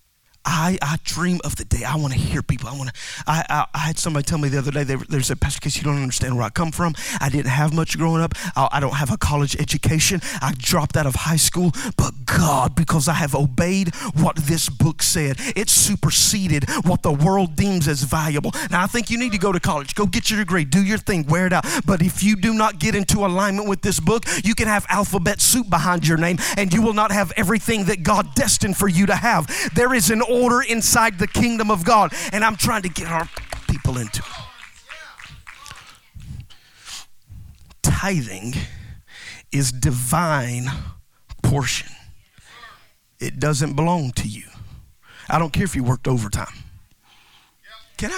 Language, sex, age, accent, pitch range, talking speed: English, male, 30-49, American, 145-200 Hz, 195 wpm